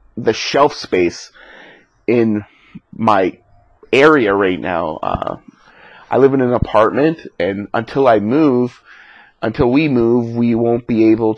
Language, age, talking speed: English, 30-49, 130 wpm